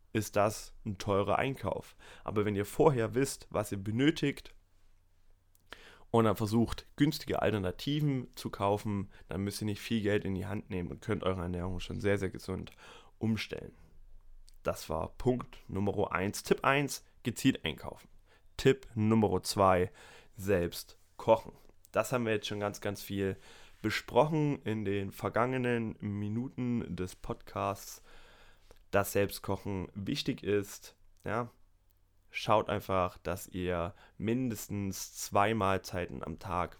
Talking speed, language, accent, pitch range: 130 wpm, German, German, 95-115 Hz